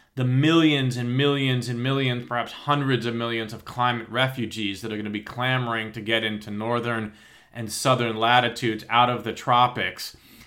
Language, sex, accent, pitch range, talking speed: English, male, American, 115-135 Hz, 170 wpm